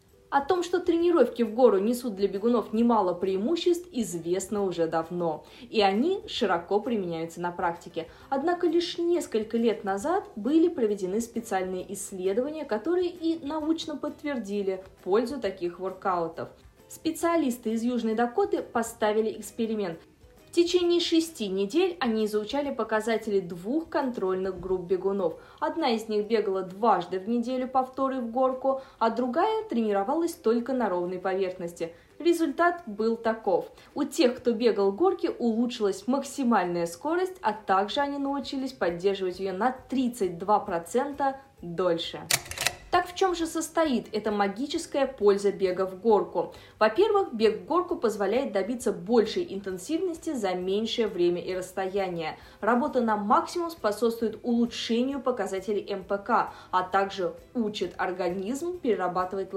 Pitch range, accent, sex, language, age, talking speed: 195-285 Hz, native, female, Russian, 20-39, 125 wpm